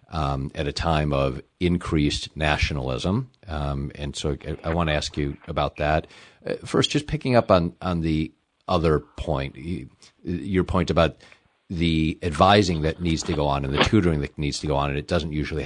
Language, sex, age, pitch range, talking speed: English, male, 50-69, 75-90 Hz, 200 wpm